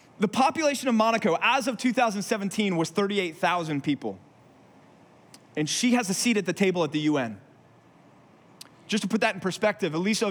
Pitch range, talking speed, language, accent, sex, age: 180-245 Hz, 165 wpm, English, American, male, 30-49